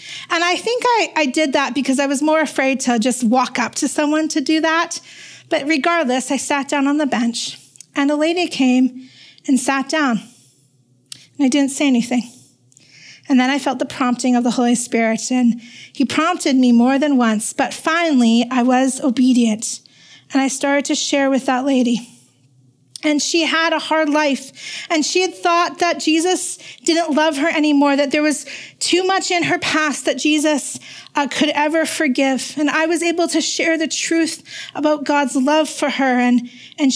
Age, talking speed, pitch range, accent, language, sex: 40-59, 190 wpm, 255-315 Hz, American, English, female